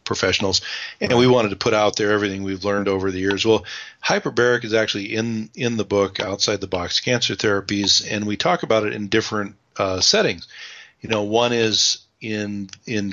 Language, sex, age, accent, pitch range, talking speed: English, male, 40-59, American, 95-110 Hz, 195 wpm